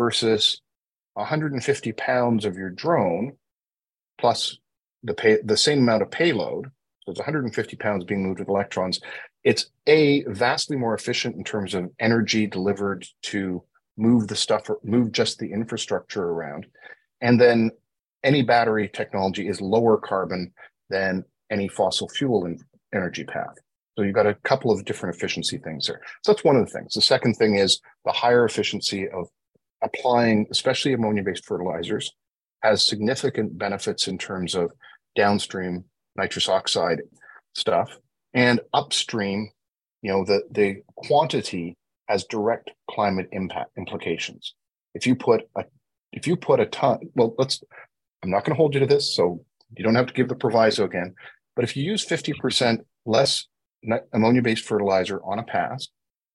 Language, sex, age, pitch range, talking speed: English, male, 40-59, 100-125 Hz, 160 wpm